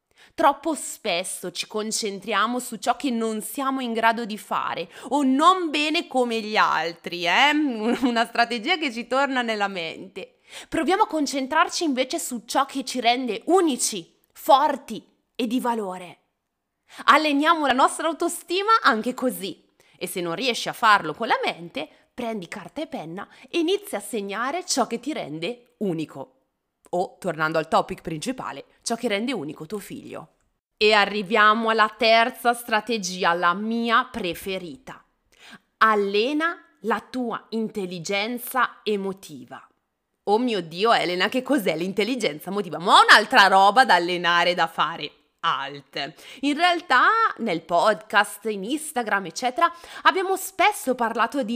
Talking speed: 140 wpm